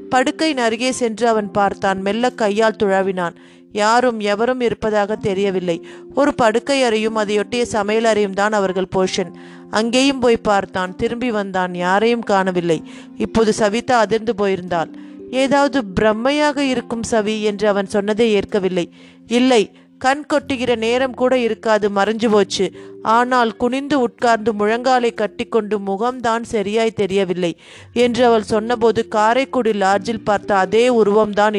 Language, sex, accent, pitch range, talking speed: Tamil, female, native, 200-240 Hz, 120 wpm